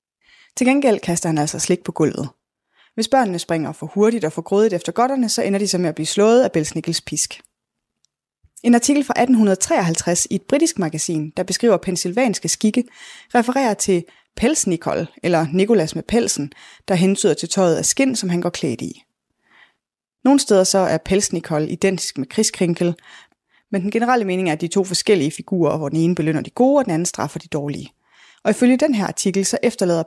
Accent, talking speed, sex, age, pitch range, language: native, 195 wpm, female, 20-39, 165-225 Hz, Danish